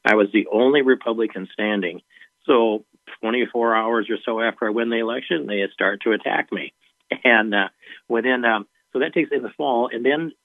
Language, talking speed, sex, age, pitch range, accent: English, 190 wpm, male, 50-69, 100-120 Hz, American